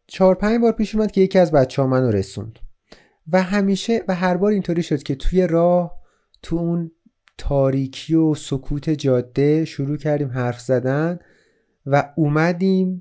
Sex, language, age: male, Persian, 30-49